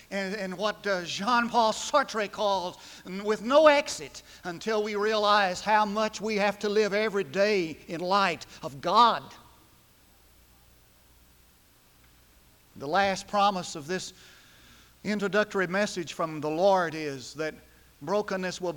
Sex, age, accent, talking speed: male, 50-69, American, 120 wpm